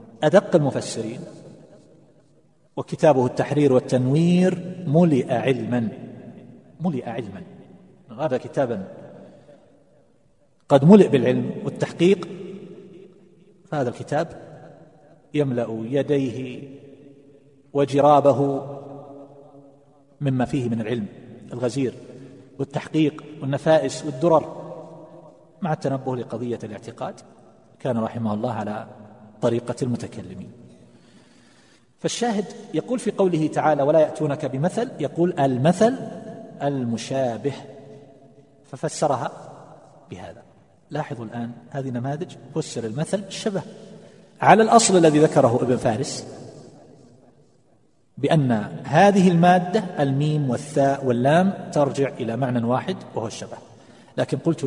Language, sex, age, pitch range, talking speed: Arabic, male, 40-59, 130-160 Hz, 85 wpm